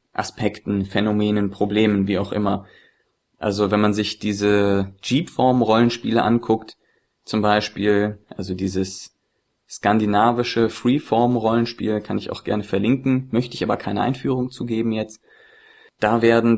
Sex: male